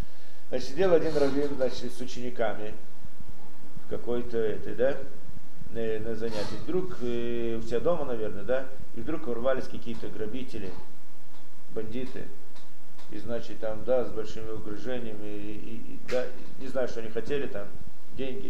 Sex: male